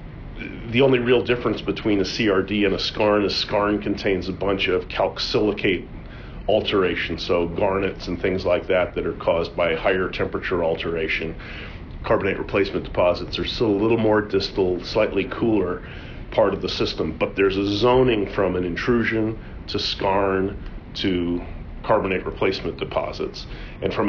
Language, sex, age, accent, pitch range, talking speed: English, male, 40-59, American, 90-105 Hz, 150 wpm